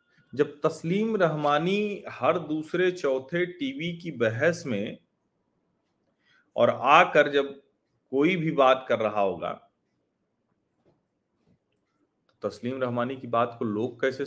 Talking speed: 110 wpm